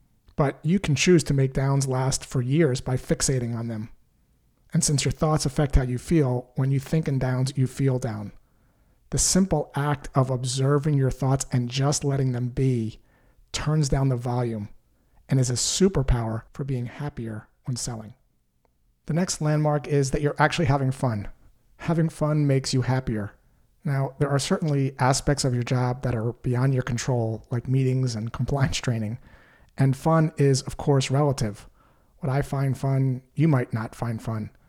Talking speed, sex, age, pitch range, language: 175 wpm, male, 30-49, 120-145 Hz, English